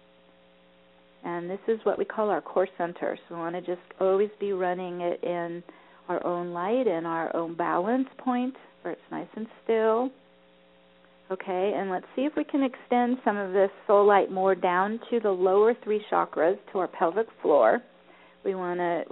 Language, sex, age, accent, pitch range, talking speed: English, female, 40-59, American, 170-205 Hz, 185 wpm